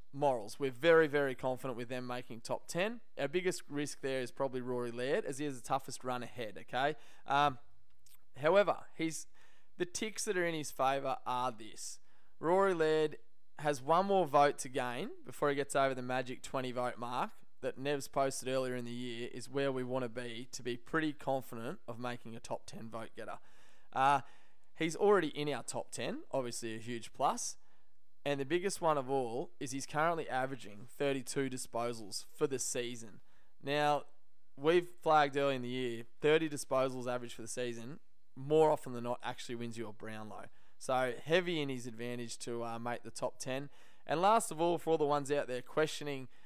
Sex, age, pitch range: male, 20-39, 125-150 Hz